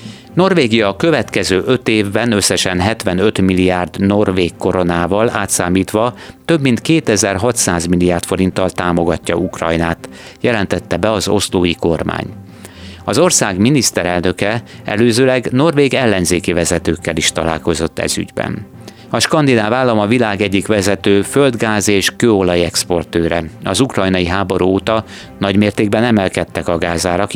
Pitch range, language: 90-110 Hz, Hungarian